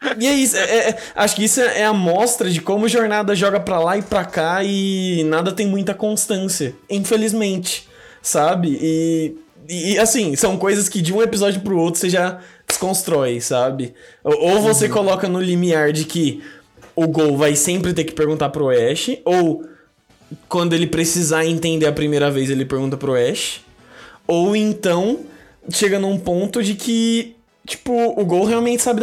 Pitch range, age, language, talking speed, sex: 160-220 Hz, 20-39, Portuguese, 175 wpm, male